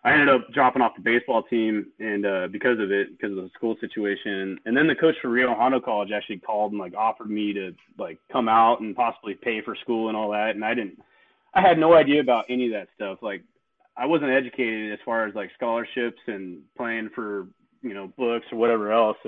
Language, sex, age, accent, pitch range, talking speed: English, male, 20-39, American, 105-125 Hz, 235 wpm